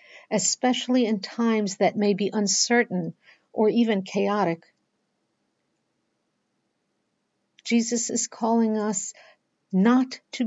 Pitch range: 195-230 Hz